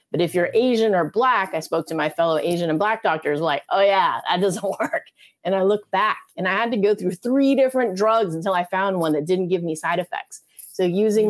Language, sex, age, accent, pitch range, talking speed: English, female, 30-49, American, 160-205 Hz, 245 wpm